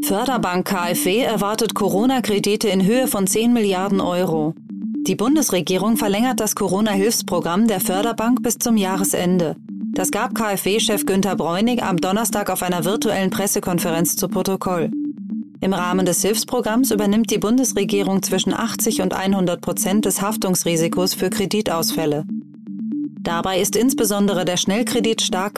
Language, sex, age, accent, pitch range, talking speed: German, female, 30-49, German, 185-225 Hz, 130 wpm